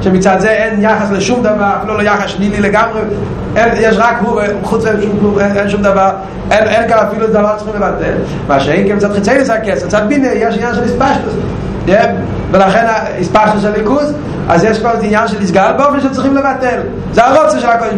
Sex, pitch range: male, 190-220 Hz